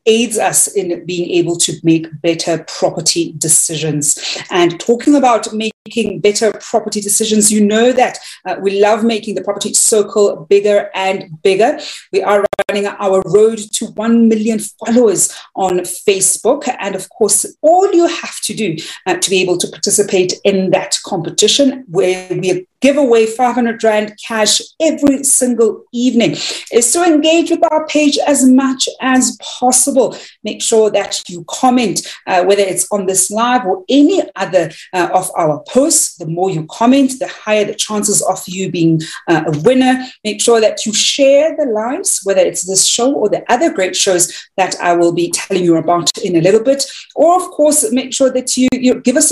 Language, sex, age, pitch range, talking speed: English, female, 40-59, 185-255 Hz, 180 wpm